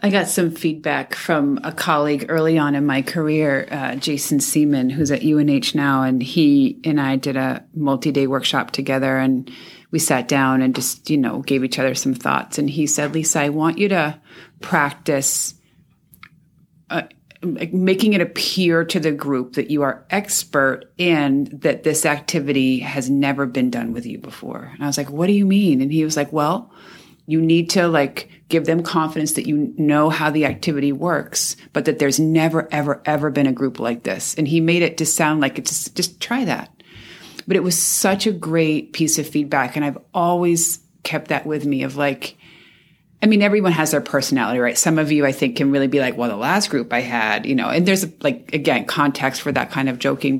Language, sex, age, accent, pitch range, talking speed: English, female, 30-49, American, 140-165 Hz, 205 wpm